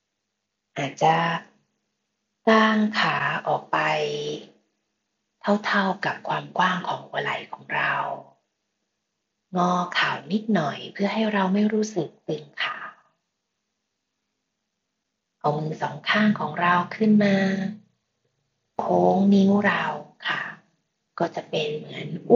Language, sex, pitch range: Thai, female, 150-215 Hz